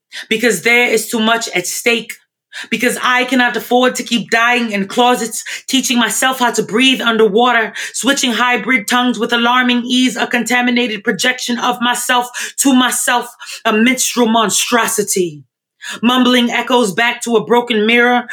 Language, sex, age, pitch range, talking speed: English, female, 30-49, 240-295 Hz, 145 wpm